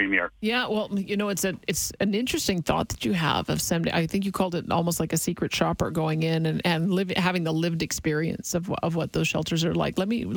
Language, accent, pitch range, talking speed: English, American, 165-200 Hz, 250 wpm